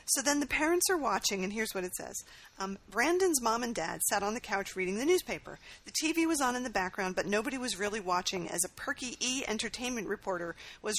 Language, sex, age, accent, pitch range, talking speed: English, female, 40-59, American, 190-260 Hz, 230 wpm